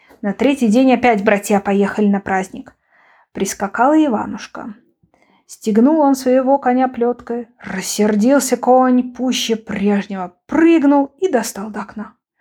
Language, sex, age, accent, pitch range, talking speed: Ukrainian, female, 20-39, native, 205-270 Hz, 115 wpm